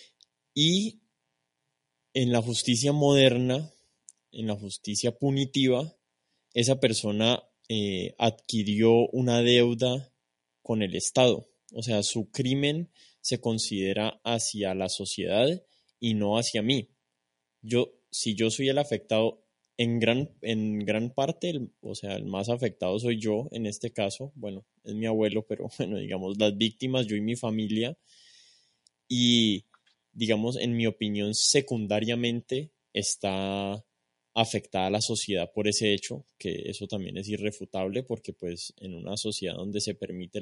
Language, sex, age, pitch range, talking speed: Spanish, male, 20-39, 95-120 Hz, 140 wpm